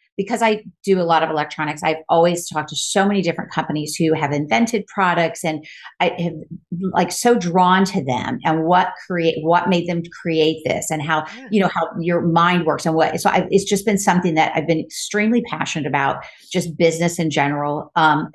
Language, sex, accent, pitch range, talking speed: English, female, American, 160-185 Hz, 205 wpm